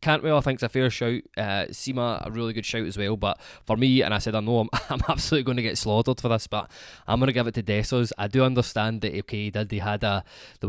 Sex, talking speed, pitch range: male, 285 wpm, 100-125 Hz